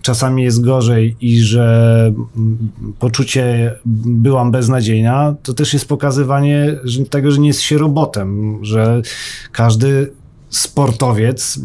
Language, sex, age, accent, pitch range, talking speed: Polish, male, 40-59, native, 115-140 Hz, 115 wpm